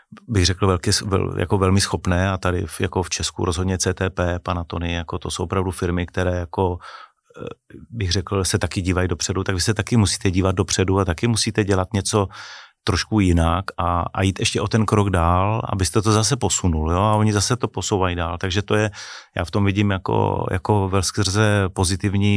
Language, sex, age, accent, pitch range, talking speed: Czech, male, 30-49, native, 90-100 Hz, 195 wpm